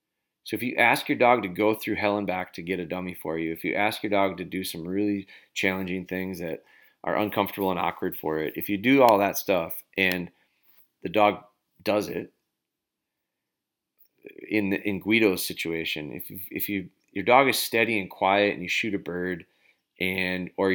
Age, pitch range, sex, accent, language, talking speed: 30-49, 90-105 Hz, male, American, English, 200 wpm